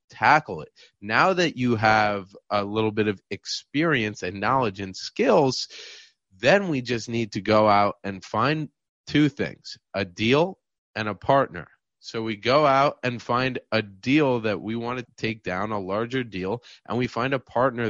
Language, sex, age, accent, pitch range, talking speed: English, male, 30-49, American, 100-125 Hz, 180 wpm